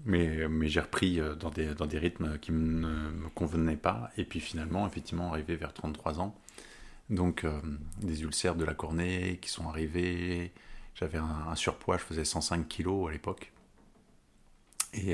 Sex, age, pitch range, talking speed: male, 30-49, 80-90 Hz, 170 wpm